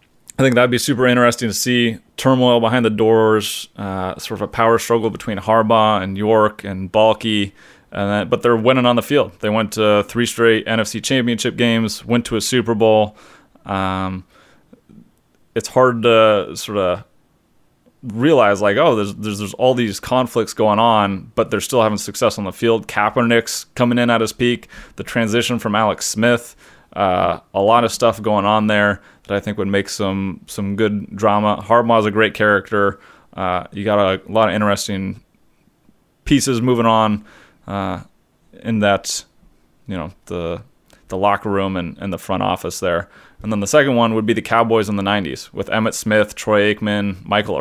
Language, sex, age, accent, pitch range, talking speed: English, male, 30-49, American, 100-115 Hz, 180 wpm